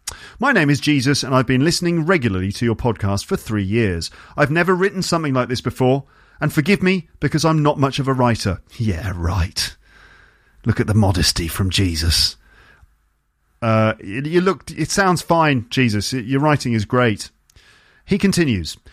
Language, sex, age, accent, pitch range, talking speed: English, male, 40-59, British, 105-155 Hz, 170 wpm